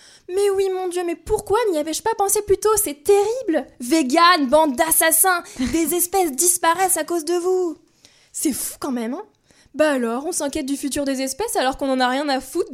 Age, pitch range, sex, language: 20-39, 240-325 Hz, female, French